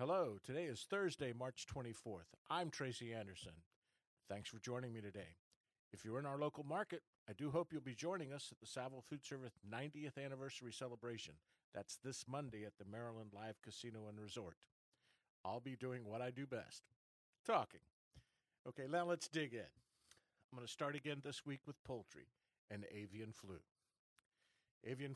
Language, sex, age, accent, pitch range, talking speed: English, male, 50-69, American, 110-140 Hz, 170 wpm